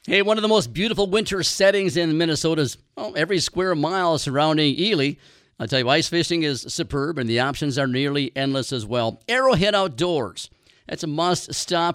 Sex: male